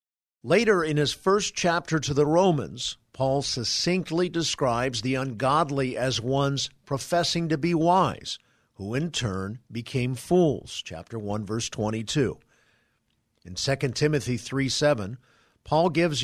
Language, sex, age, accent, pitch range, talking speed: English, male, 50-69, American, 120-160 Hz, 130 wpm